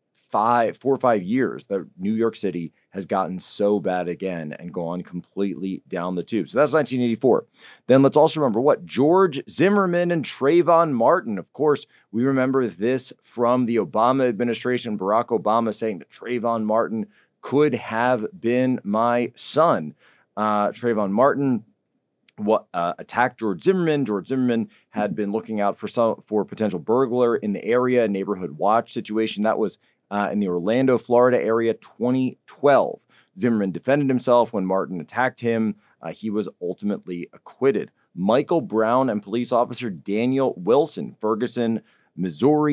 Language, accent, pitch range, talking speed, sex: English, American, 100-125 Hz, 155 wpm, male